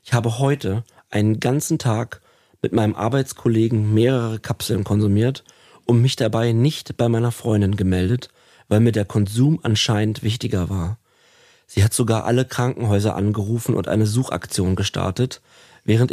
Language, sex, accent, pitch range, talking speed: German, male, German, 105-130 Hz, 140 wpm